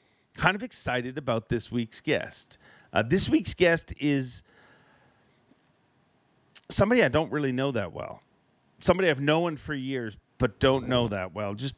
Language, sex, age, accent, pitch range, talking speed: English, male, 40-59, American, 105-140 Hz, 155 wpm